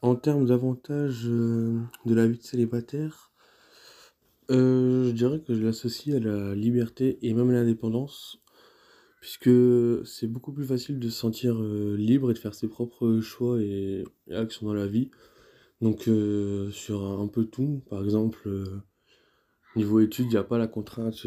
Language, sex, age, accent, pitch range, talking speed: French, male, 20-39, French, 105-120 Hz, 170 wpm